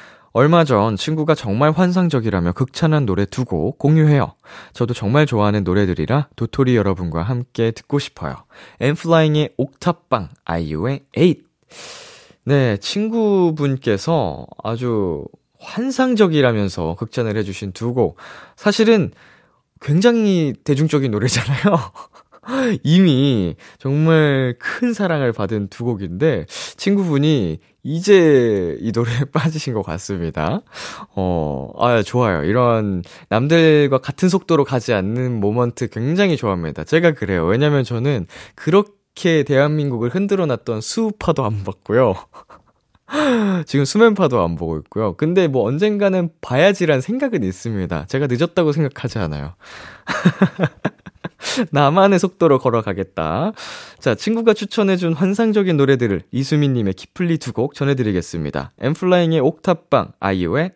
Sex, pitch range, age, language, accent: male, 110-170 Hz, 20-39, Korean, native